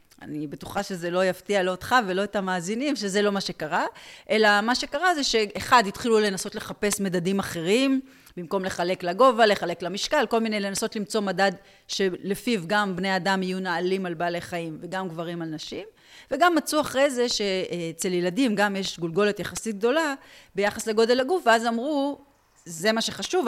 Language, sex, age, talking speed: Hebrew, female, 30-49, 170 wpm